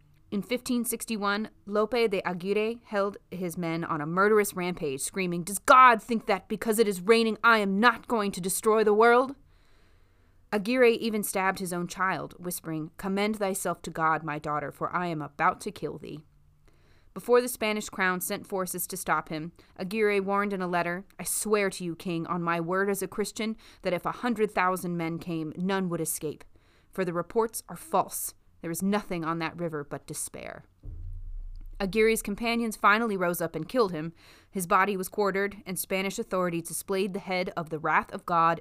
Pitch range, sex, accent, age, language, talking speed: 160-210 Hz, female, American, 30-49, English, 185 wpm